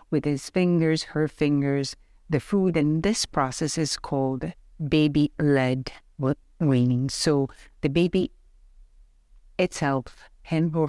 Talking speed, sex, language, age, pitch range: 110 wpm, female, English, 60-79, 135-165 Hz